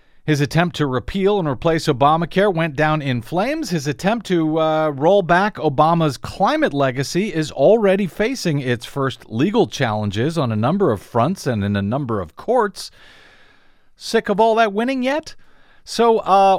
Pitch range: 125-195 Hz